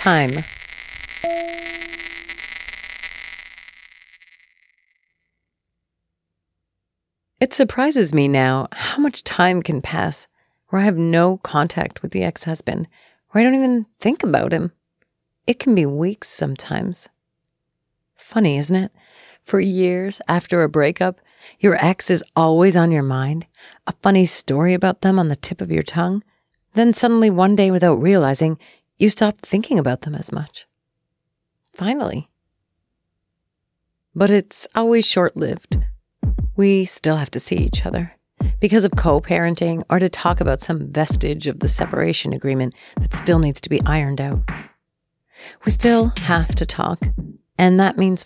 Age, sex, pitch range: 40-59, female, 145-195 Hz